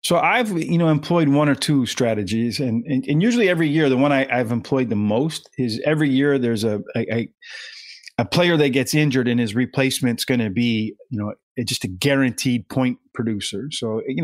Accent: American